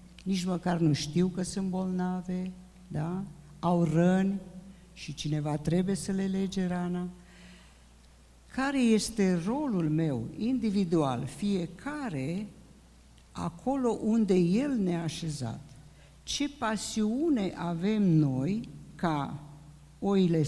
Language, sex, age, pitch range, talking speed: Romanian, female, 50-69, 155-210 Hz, 95 wpm